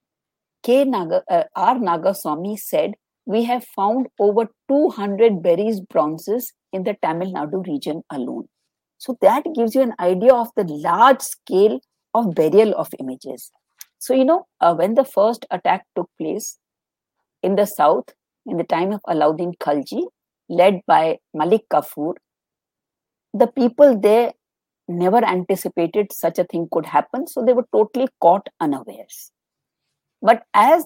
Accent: Indian